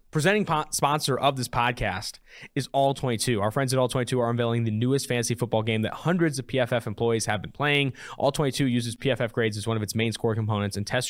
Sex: male